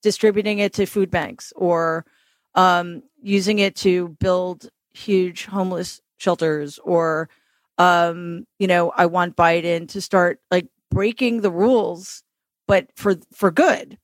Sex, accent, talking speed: female, American, 135 wpm